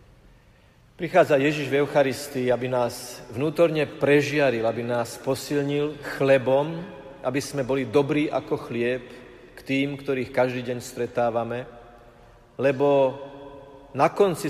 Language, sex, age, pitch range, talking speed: Slovak, male, 40-59, 130-150 Hz, 110 wpm